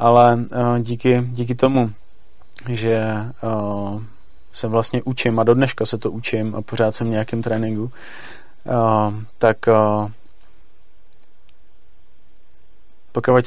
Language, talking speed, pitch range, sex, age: Czech, 115 wpm, 110-125 Hz, male, 30-49